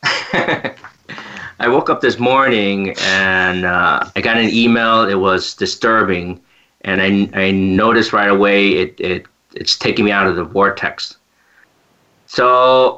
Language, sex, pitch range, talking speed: English, male, 100-125 Hz, 140 wpm